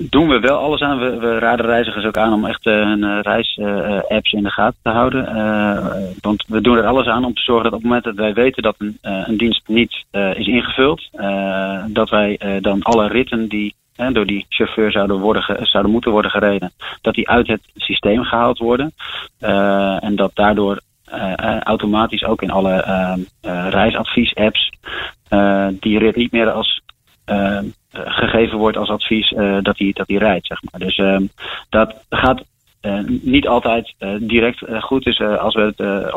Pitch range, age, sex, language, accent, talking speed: 100-115 Hz, 30-49, male, Dutch, Dutch, 175 wpm